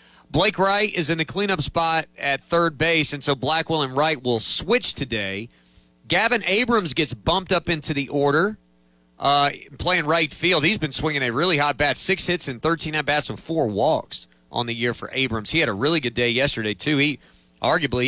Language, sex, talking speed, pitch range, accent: English, male, 200 wpm, 120-165 Hz, American